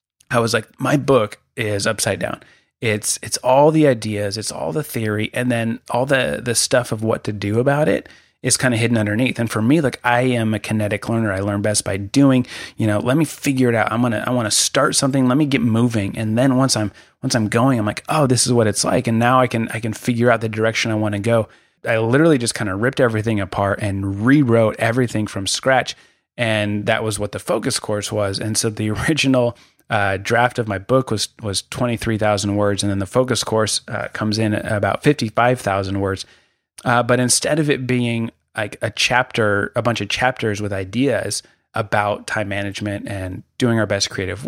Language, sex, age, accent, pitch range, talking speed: English, male, 30-49, American, 105-125 Hz, 220 wpm